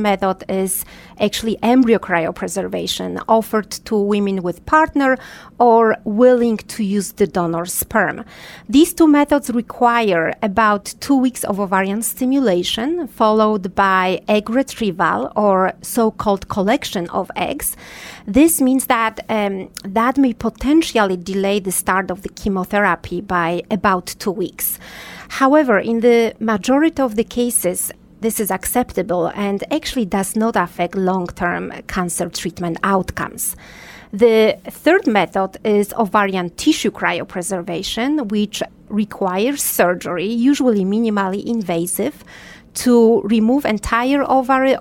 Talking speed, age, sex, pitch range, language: 120 wpm, 40-59, female, 190-245 Hz, English